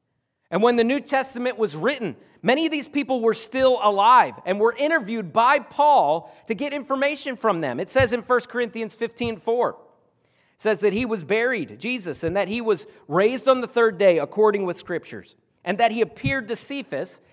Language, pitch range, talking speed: English, 175-240 Hz, 195 wpm